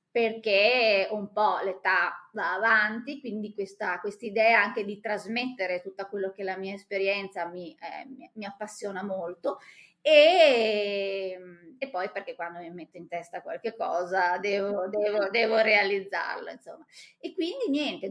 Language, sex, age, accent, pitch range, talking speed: Italian, female, 20-39, native, 190-240 Hz, 140 wpm